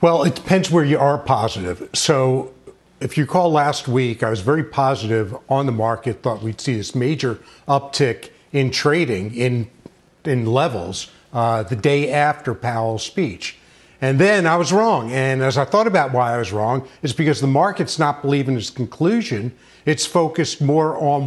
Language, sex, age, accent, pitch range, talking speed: English, male, 50-69, American, 130-170 Hz, 180 wpm